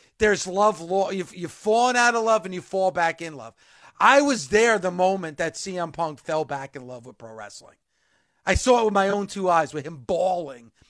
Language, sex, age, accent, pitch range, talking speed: English, male, 40-59, American, 175-245 Hz, 220 wpm